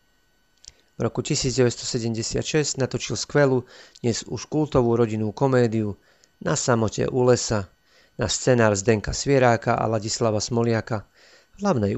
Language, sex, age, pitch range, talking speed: Slovak, male, 40-59, 105-125 Hz, 115 wpm